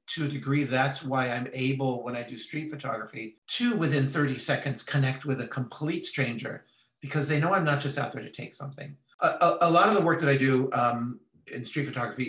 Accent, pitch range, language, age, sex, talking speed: American, 120-145 Hz, English, 40-59, male, 225 wpm